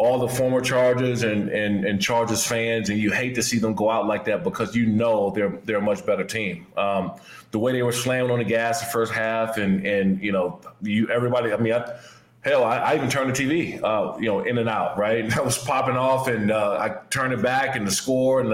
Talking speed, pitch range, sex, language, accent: 255 wpm, 105-125 Hz, male, English, American